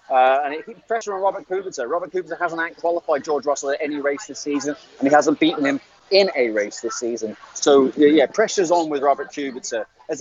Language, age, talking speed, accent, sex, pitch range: English, 30-49, 215 wpm, British, male, 135-175 Hz